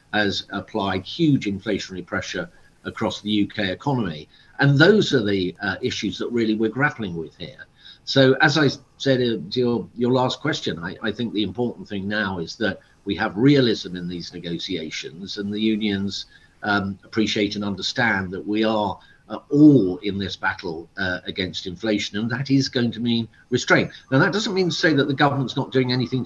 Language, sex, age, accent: English, male, 50-69, British